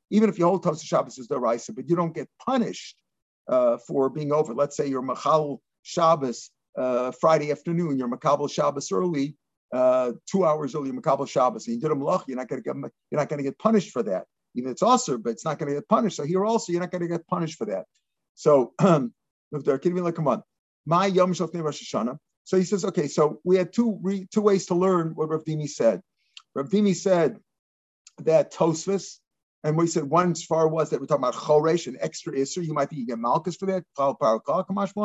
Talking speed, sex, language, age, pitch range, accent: 195 wpm, male, English, 50-69, 145-190 Hz, American